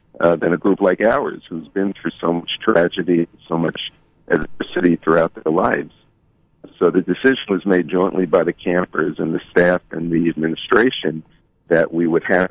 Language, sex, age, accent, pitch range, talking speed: English, male, 50-69, American, 85-95 Hz, 175 wpm